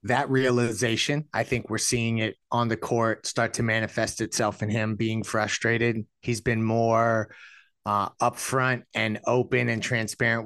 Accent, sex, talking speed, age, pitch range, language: American, male, 155 wpm, 30-49, 110-120 Hz, English